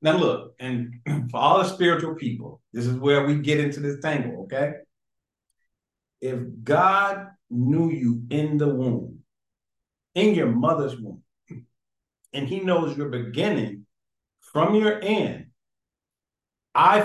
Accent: American